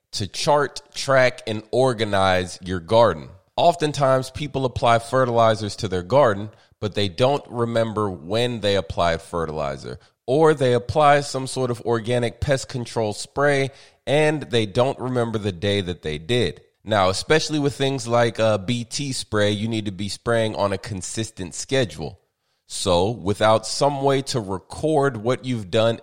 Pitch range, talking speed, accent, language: 105-130 Hz, 155 wpm, American, English